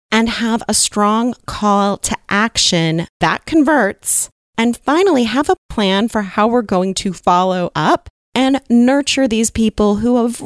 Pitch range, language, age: 180-250 Hz, English, 30-49